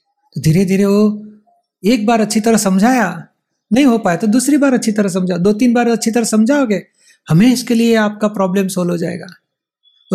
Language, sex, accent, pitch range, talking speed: Hindi, male, native, 185-230 Hz, 195 wpm